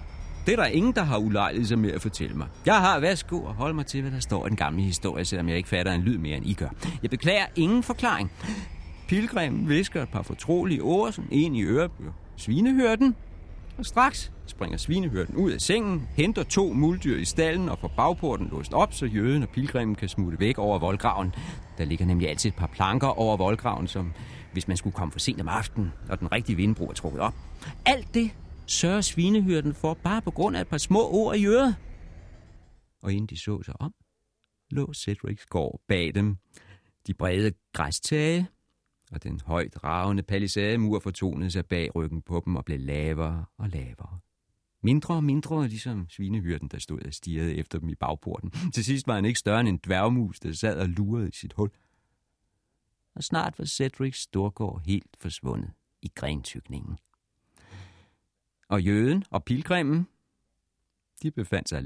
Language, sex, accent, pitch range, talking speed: Danish, male, native, 90-135 Hz, 185 wpm